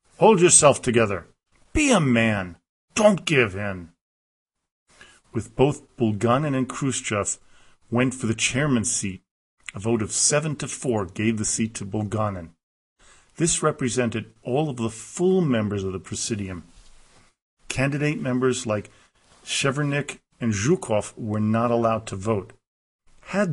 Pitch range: 100-125 Hz